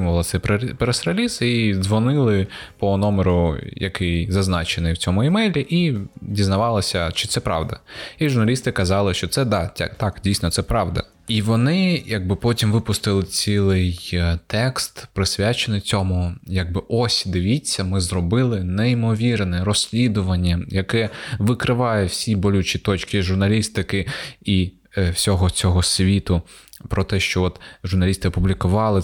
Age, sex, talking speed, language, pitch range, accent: 20-39, male, 120 wpm, Ukrainian, 90-115 Hz, native